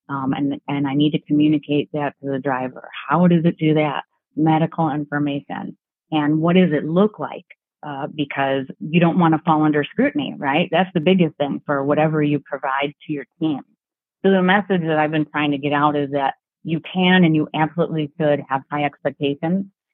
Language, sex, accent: English, female, American